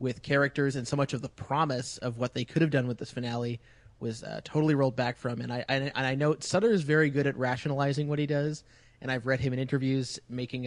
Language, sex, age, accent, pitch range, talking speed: English, male, 30-49, American, 125-150 Hz, 260 wpm